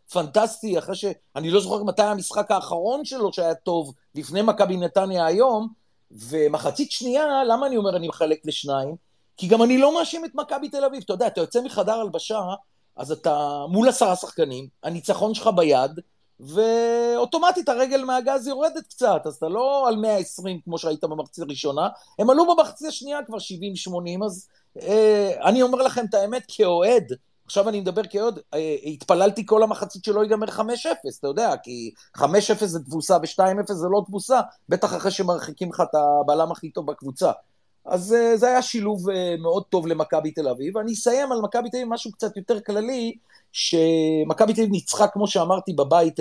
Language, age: Hebrew, 40-59